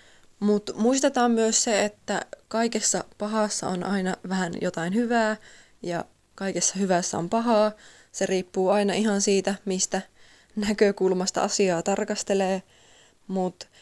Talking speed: 115 wpm